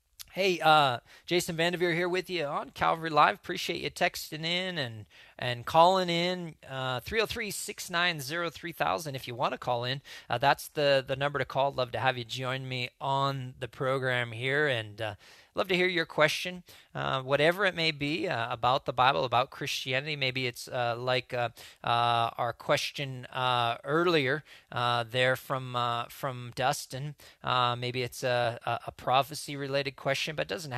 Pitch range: 125-150 Hz